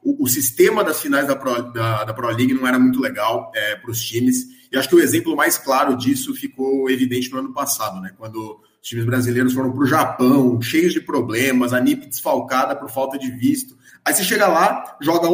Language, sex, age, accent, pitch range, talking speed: Portuguese, male, 20-39, Brazilian, 125-210 Hz, 215 wpm